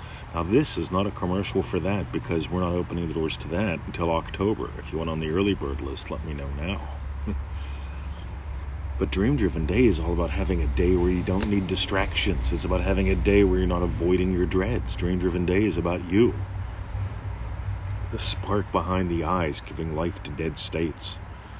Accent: American